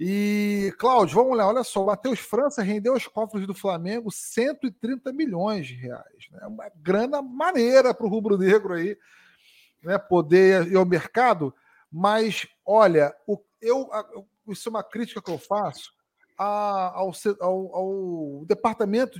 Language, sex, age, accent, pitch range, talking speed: Portuguese, male, 40-59, Brazilian, 185-245 Hz, 145 wpm